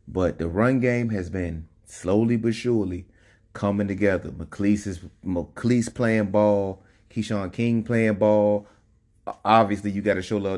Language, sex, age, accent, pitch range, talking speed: English, male, 30-49, American, 95-110 Hz, 140 wpm